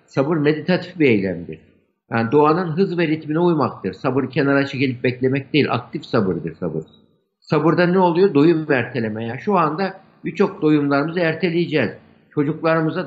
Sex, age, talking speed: male, 60-79, 140 wpm